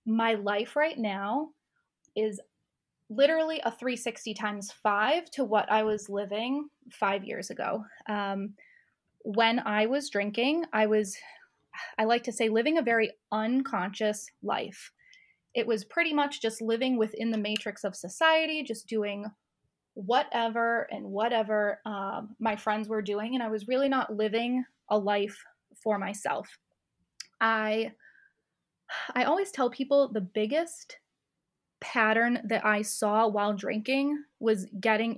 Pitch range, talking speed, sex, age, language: 210-260 Hz, 135 wpm, female, 20-39, English